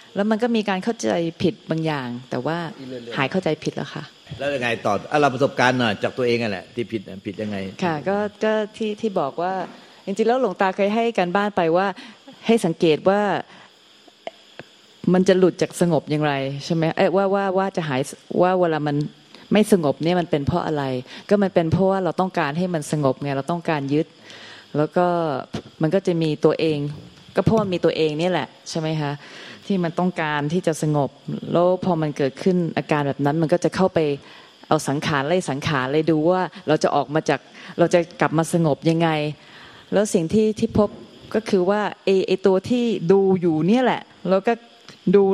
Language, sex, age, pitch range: Thai, female, 20-39, 155-195 Hz